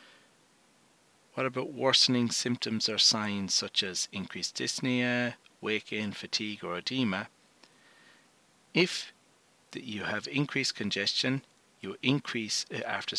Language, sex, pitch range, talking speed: English, male, 105-130 Hz, 100 wpm